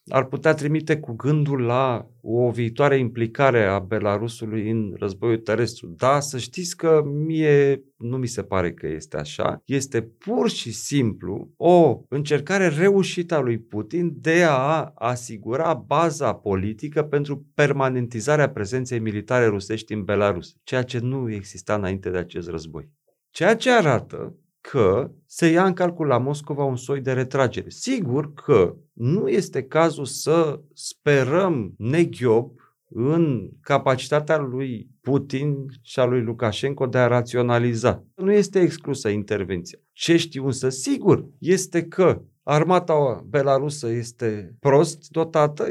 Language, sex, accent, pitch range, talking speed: Romanian, male, native, 115-155 Hz, 135 wpm